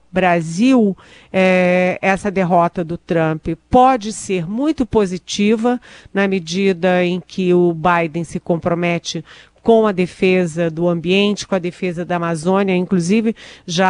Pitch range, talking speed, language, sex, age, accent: 170-200 Hz, 125 wpm, Portuguese, female, 50-69, Brazilian